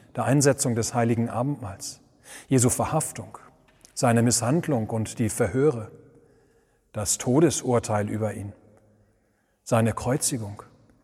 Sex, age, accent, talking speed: male, 40-59, German, 100 wpm